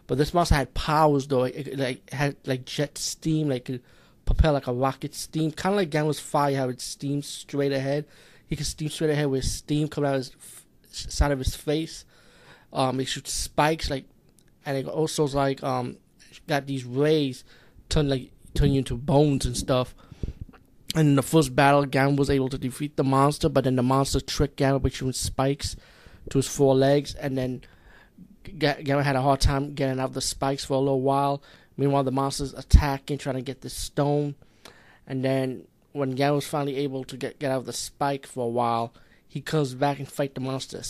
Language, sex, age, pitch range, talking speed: English, male, 20-39, 130-145 Hz, 210 wpm